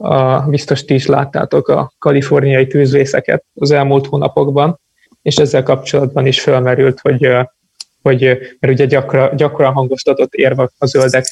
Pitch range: 130-145 Hz